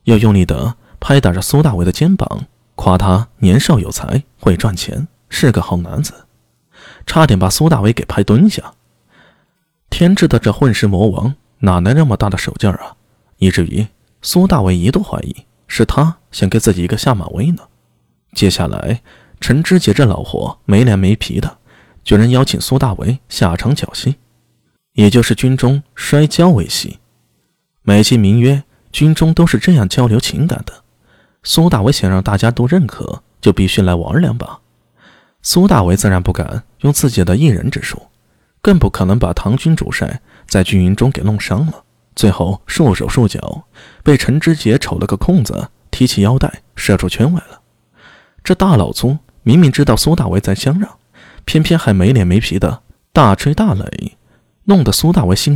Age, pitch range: 20-39, 100-150 Hz